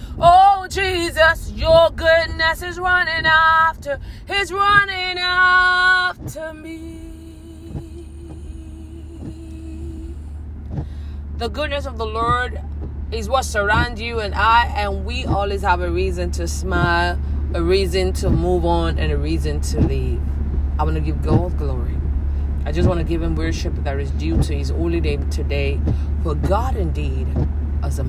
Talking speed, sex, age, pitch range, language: 140 wpm, female, 30-49, 70-80 Hz, English